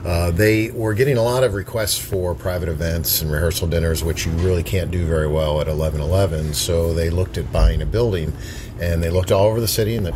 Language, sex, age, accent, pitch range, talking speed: English, male, 50-69, American, 85-105 Hz, 230 wpm